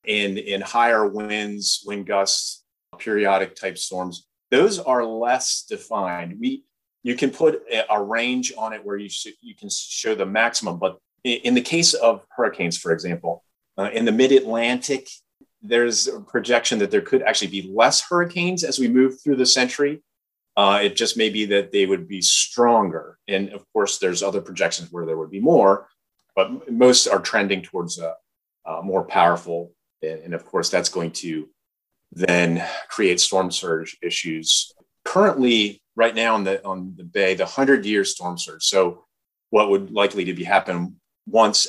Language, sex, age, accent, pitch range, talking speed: English, male, 30-49, American, 95-140 Hz, 175 wpm